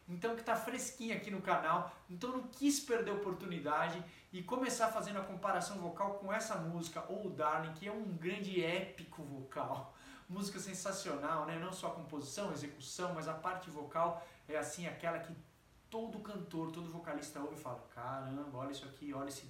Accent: Brazilian